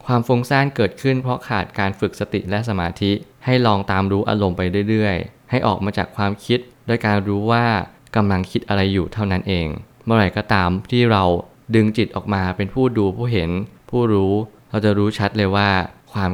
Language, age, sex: Thai, 20-39, male